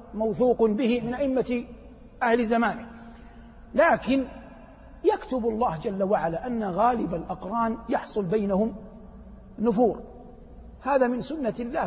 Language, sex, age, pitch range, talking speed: Arabic, male, 60-79, 200-240 Hz, 105 wpm